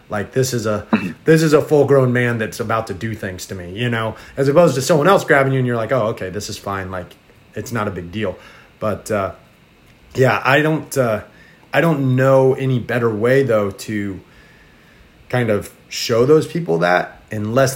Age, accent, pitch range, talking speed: 30-49, American, 110-145 Hz, 205 wpm